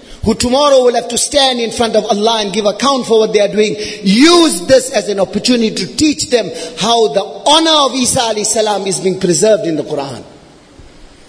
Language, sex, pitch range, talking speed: English, male, 225-300 Hz, 200 wpm